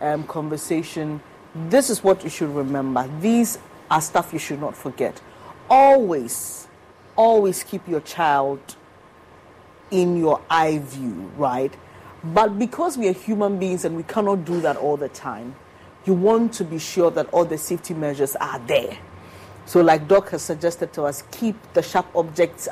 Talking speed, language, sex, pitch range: 165 wpm, English, female, 155-200 Hz